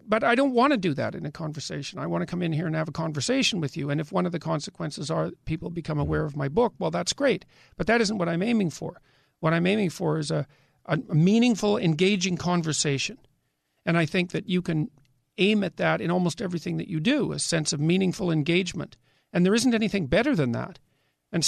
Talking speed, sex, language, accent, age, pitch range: 230 wpm, male, English, American, 50-69, 155-200 Hz